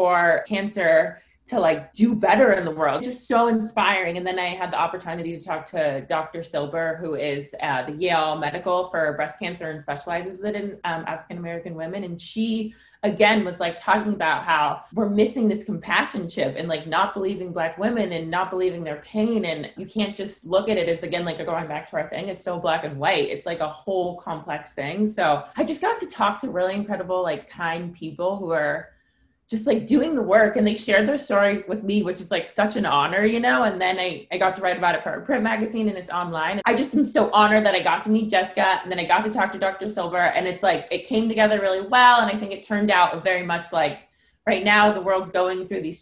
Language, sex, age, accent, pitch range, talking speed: English, female, 20-39, American, 170-210 Hz, 240 wpm